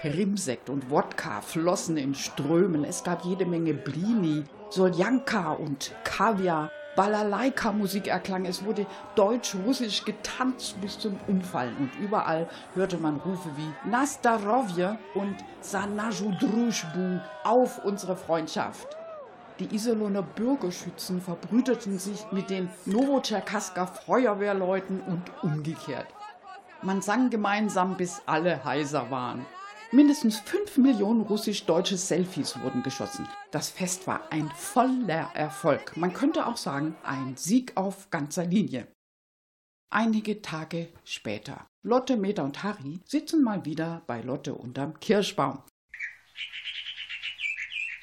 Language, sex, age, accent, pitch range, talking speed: German, female, 60-79, German, 160-220 Hz, 110 wpm